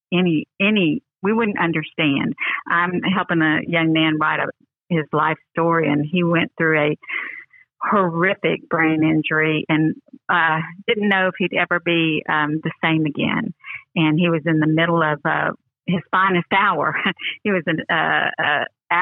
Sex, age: female, 50-69